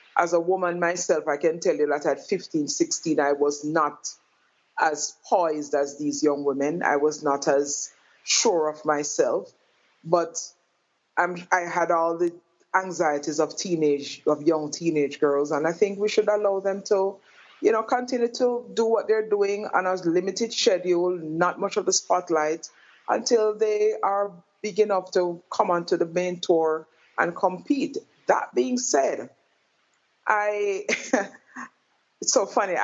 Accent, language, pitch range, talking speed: Nigerian, English, 155-210 Hz, 155 wpm